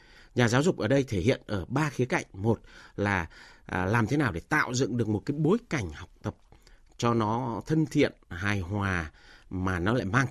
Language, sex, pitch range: Vietnamese, male, 105-145 Hz